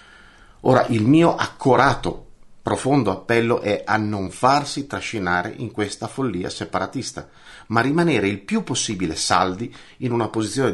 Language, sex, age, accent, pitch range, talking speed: Italian, male, 50-69, native, 90-130 Hz, 135 wpm